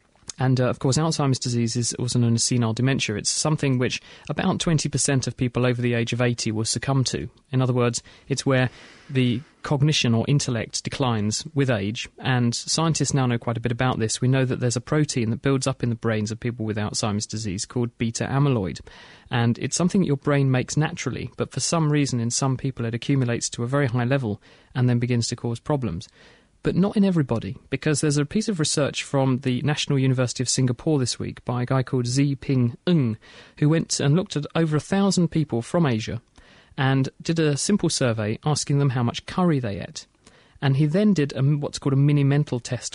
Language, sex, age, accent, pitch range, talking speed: English, male, 30-49, British, 120-150 Hz, 215 wpm